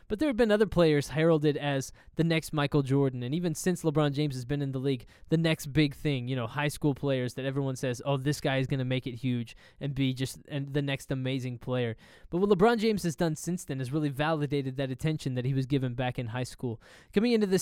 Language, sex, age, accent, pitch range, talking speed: English, male, 20-39, American, 135-170 Hz, 255 wpm